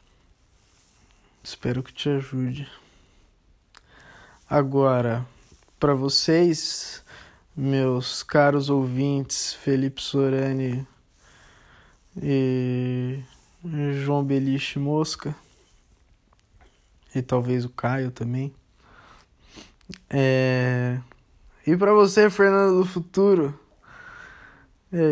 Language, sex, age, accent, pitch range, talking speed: Portuguese, male, 20-39, Brazilian, 125-150 Hz, 70 wpm